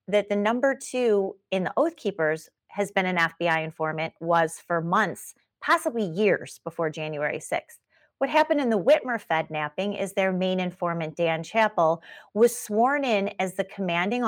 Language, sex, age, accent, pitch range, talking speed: English, female, 30-49, American, 170-210 Hz, 170 wpm